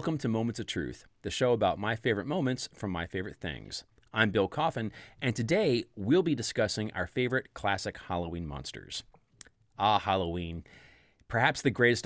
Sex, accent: male, American